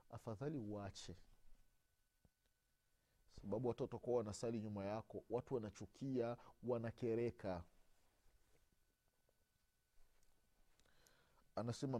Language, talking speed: Swahili, 60 wpm